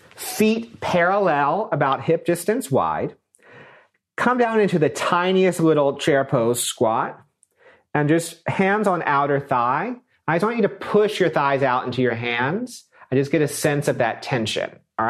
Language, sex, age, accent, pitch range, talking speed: English, male, 40-59, American, 130-185 Hz, 165 wpm